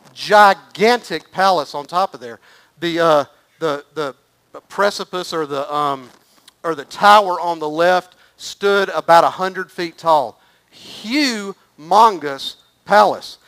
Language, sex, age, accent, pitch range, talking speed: English, male, 50-69, American, 155-190 Hz, 125 wpm